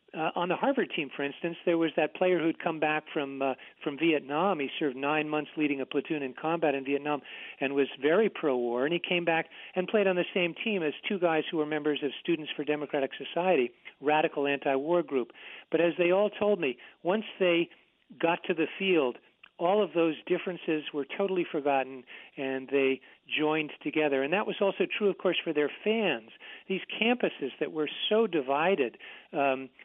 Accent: American